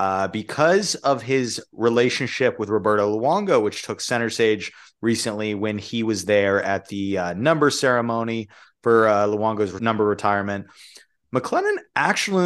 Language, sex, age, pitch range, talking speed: English, male, 30-49, 95-120 Hz, 140 wpm